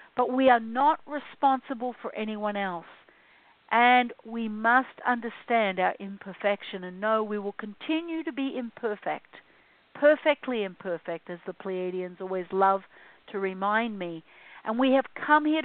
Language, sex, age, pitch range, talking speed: English, female, 50-69, 210-275 Hz, 140 wpm